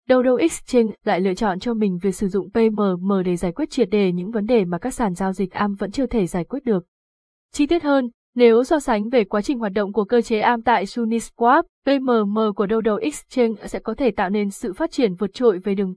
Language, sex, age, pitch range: Vietnamese, female, 20-39, 195-240 Hz